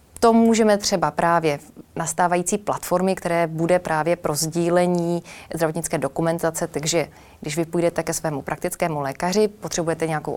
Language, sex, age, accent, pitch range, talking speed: Czech, female, 20-39, native, 160-190 Hz, 140 wpm